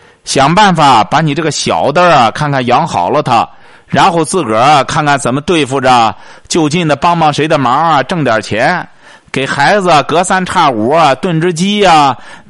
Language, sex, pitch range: Chinese, male, 130-180 Hz